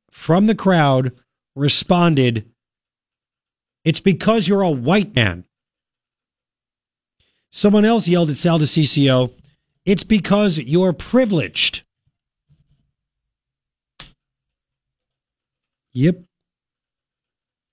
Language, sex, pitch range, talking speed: English, male, 125-170 Hz, 75 wpm